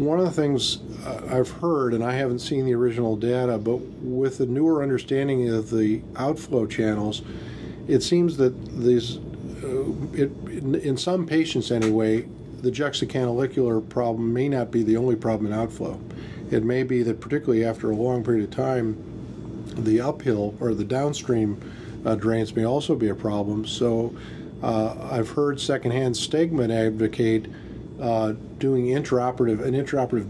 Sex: male